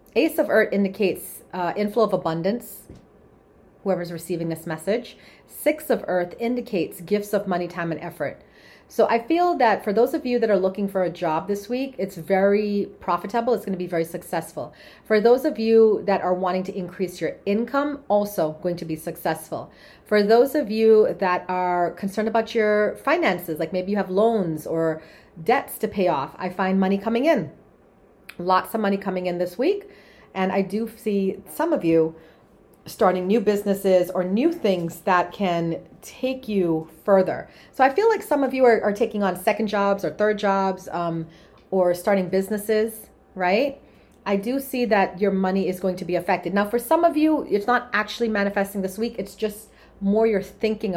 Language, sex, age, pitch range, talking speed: English, female, 40-59, 180-225 Hz, 190 wpm